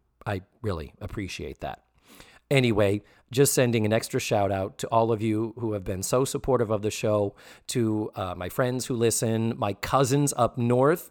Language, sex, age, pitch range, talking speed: English, male, 40-59, 105-145 Hz, 180 wpm